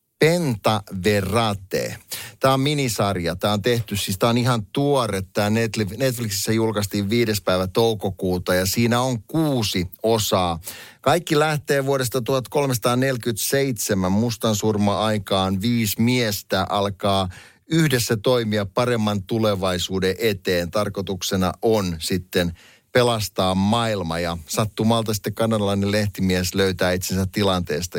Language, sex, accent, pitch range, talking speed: Finnish, male, native, 95-120 Hz, 105 wpm